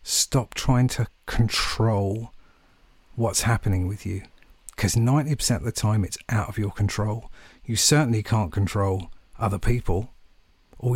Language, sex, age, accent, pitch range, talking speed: English, male, 50-69, British, 105-125 Hz, 135 wpm